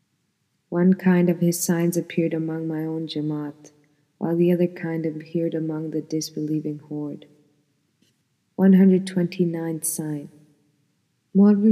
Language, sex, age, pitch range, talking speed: English, female, 20-39, 160-180 Hz, 115 wpm